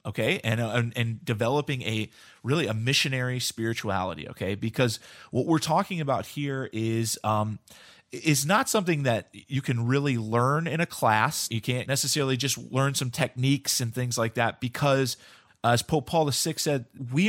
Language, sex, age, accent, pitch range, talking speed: English, male, 30-49, American, 115-140 Hz, 165 wpm